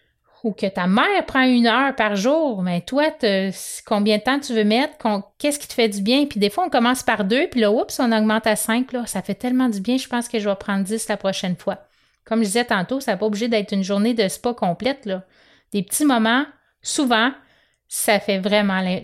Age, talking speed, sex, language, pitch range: 30-49, 245 wpm, female, French, 205-260 Hz